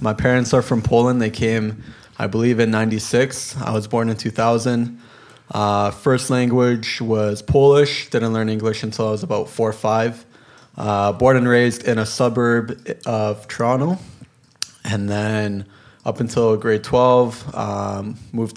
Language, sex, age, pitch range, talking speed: English, male, 20-39, 110-125 Hz, 155 wpm